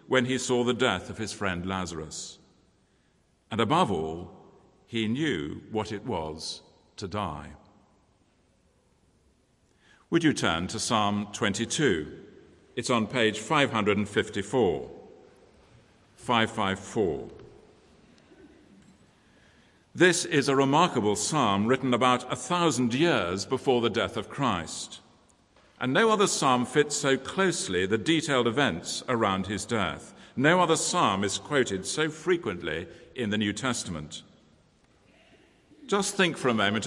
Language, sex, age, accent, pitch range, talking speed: English, male, 50-69, British, 100-140 Hz, 120 wpm